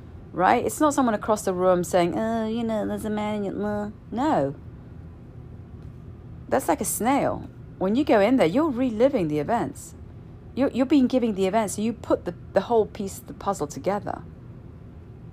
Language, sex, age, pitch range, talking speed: English, female, 40-59, 140-230 Hz, 175 wpm